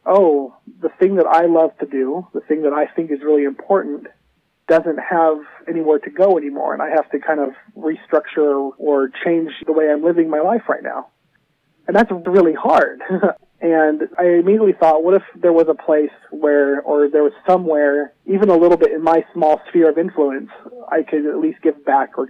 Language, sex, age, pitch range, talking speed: English, male, 40-59, 145-165 Hz, 200 wpm